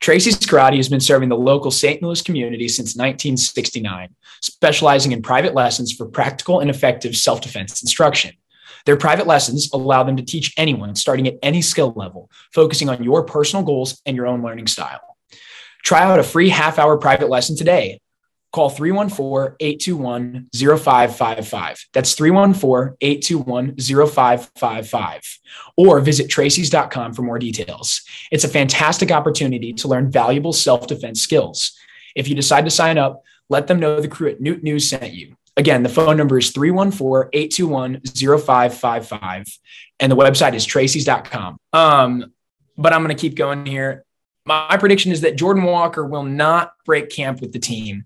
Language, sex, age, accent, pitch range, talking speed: English, male, 20-39, American, 125-155 Hz, 150 wpm